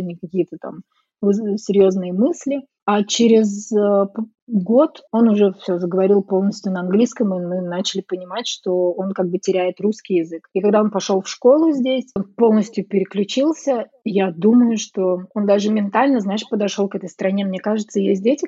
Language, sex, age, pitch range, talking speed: Russian, female, 20-39, 190-220 Hz, 165 wpm